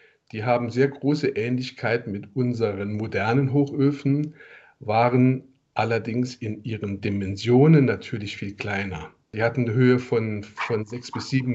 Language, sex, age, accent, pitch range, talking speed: German, male, 40-59, German, 115-140 Hz, 135 wpm